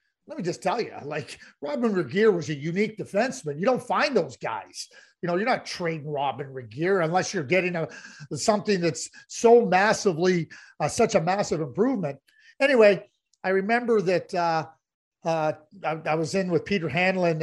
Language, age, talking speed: English, 40-59, 170 wpm